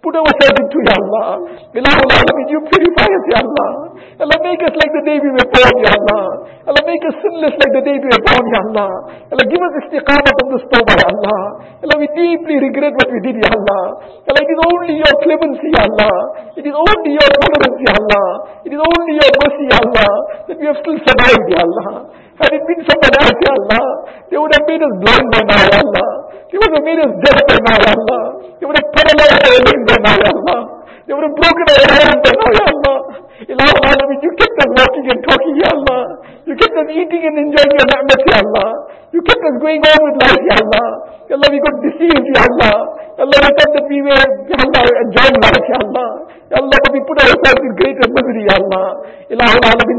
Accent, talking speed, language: Indian, 220 wpm, English